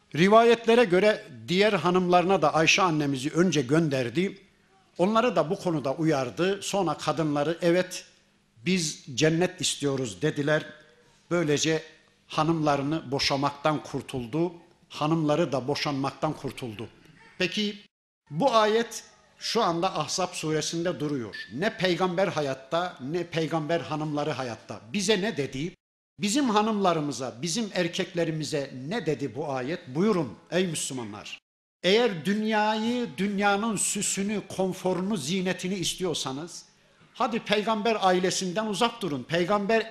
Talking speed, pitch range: 105 wpm, 150-195 Hz